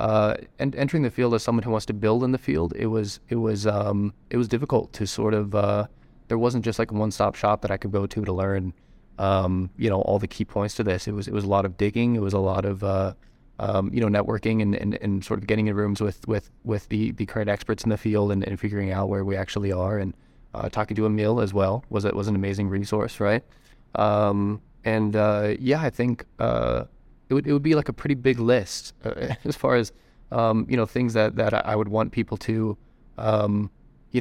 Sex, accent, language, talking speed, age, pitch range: male, American, English, 245 wpm, 20-39, 100-115 Hz